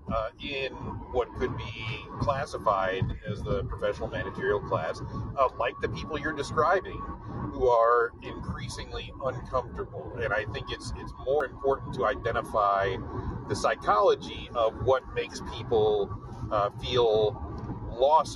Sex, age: male, 40-59